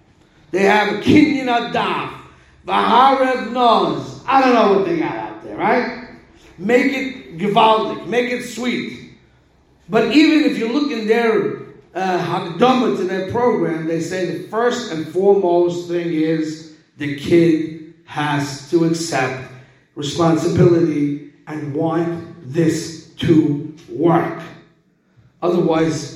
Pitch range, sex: 155-195 Hz, male